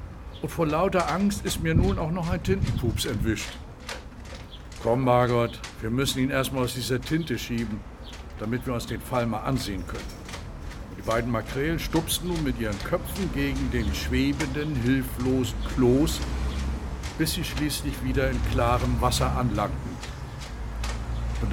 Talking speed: 145 wpm